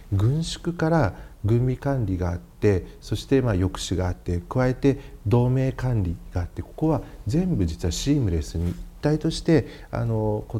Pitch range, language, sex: 90-120 Hz, Japanese, male